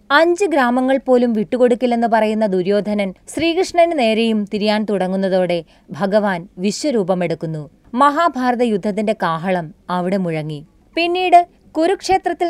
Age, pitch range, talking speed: 20-39, 195-275 Hz, 90 wpm